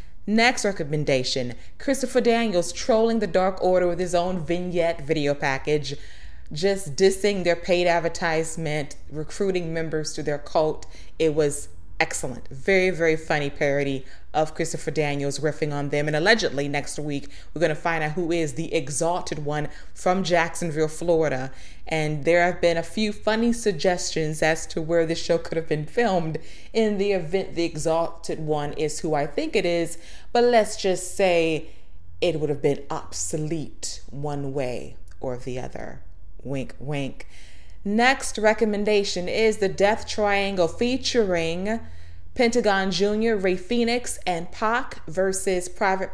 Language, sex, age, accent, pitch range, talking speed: English, female, 20-39, American, 155-200 Hz, 150 wpm